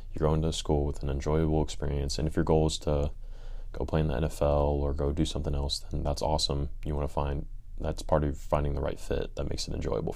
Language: English